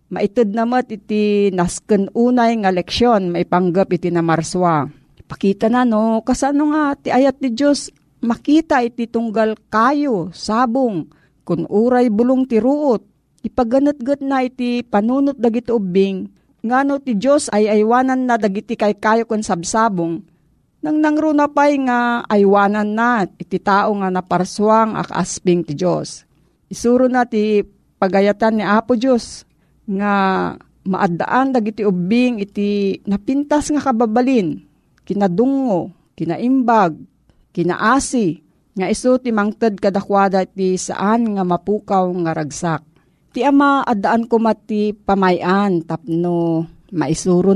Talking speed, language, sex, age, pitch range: 125 wpm, Filipino, female, 40-59, 190-245 Hz